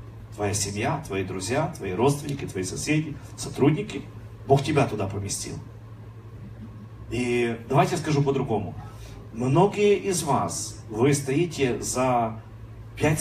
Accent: native